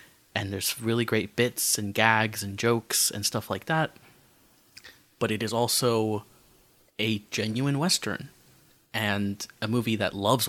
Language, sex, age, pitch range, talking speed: English, male, 20-39, 100-115 Hz, 145 wpm